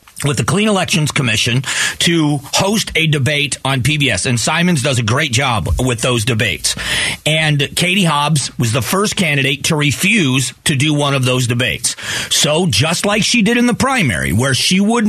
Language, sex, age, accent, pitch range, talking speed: English, male, 40-59, American, 140-185 Hz, 185 wpm